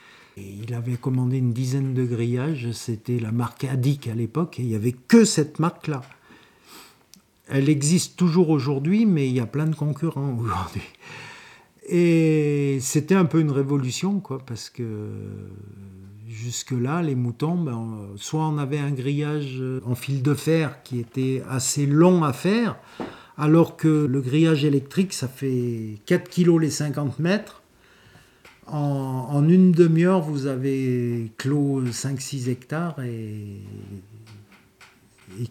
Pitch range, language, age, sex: 115-150 Hz, French, 50-69, male